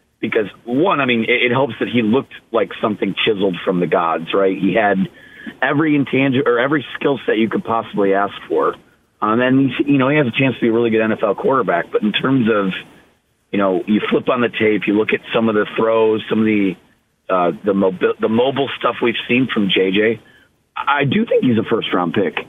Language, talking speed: English, 225 wpm